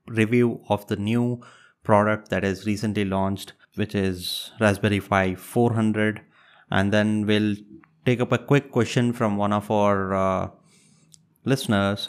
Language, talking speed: English, 140 wpm